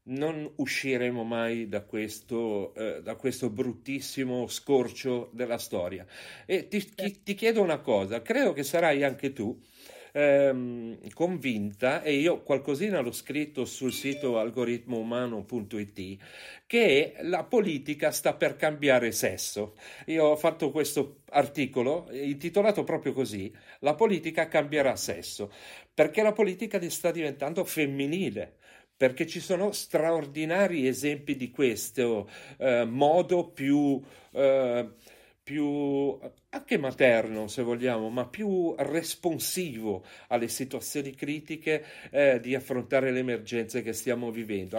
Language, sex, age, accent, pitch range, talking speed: Italian, male, 40-59, native, 120-145 Hz, 120 wpm